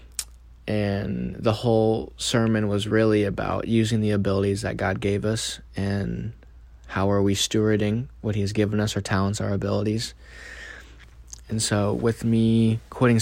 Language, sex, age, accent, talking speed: English, male, 20-39, American, 150 wpm